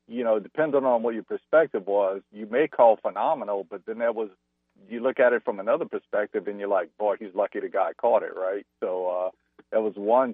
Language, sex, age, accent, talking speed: English, male, 50-69, American, 225 wpm